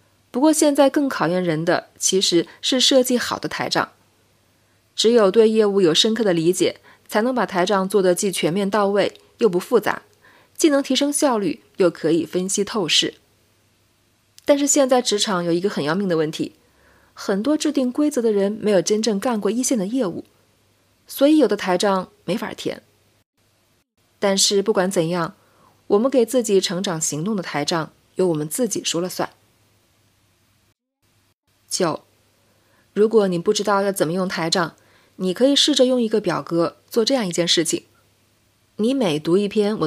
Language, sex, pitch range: Chinese, female, 160-225 Hz